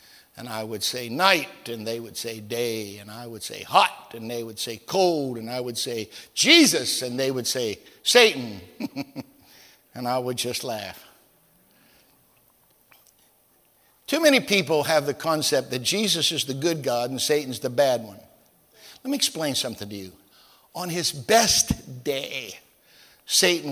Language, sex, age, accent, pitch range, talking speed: English, male, 60-79, American, 125-195 Hz, 160 wpm